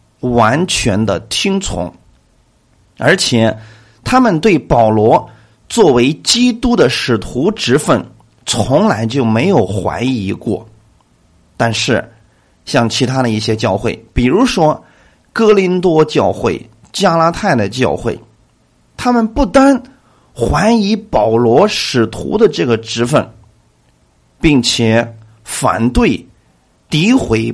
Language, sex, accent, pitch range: Chinese, male, native, 110-175 Hz